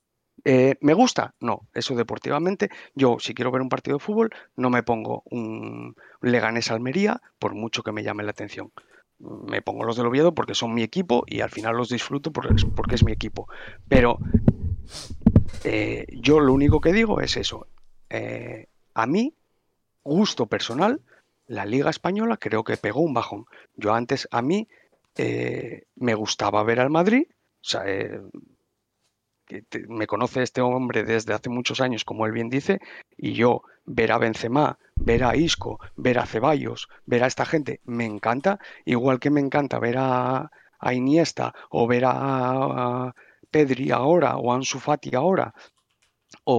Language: Spanish